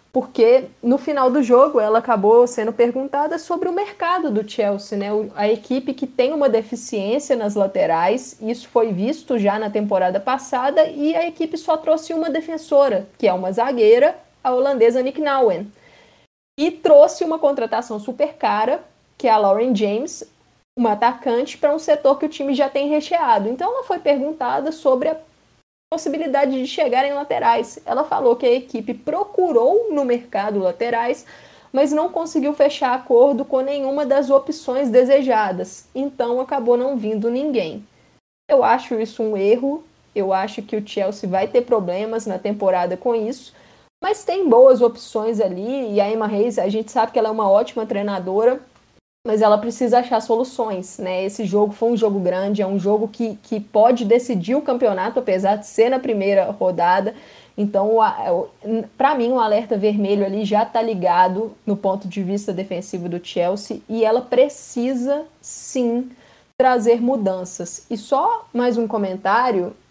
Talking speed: 165 wpm